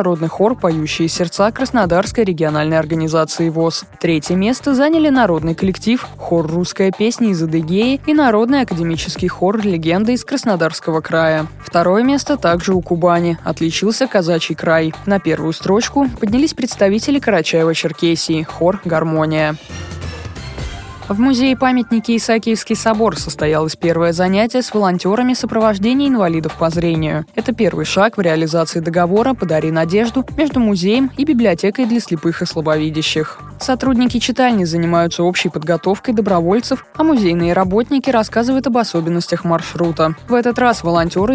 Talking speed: 130 wpm